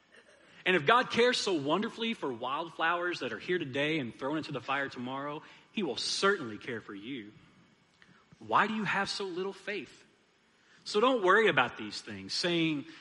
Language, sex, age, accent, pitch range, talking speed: English, male, 30-49, American, 130-195 Hz, 175 wpm